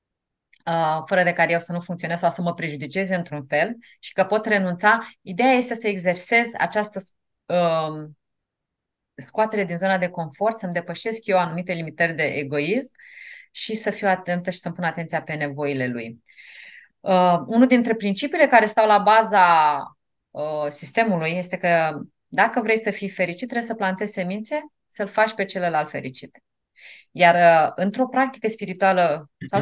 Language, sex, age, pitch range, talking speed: Romanian, female, 30-49, 165-215 Hz, 150 wpm